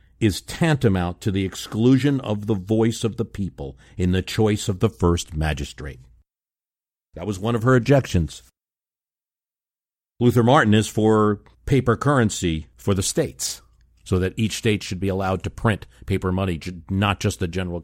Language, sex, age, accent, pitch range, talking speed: English, male, 50-69, American, 80-110 Hz, 160 wpm